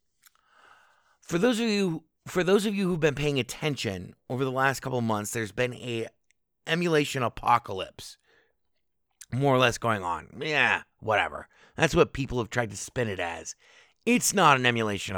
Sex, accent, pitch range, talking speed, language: male, American, 110-150 Hz, 170 wpm, English